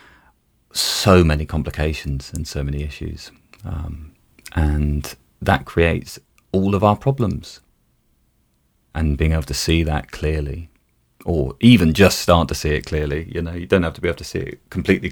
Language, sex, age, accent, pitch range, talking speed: English, male, 30-49, British, 70-85 Hz, 165 wpm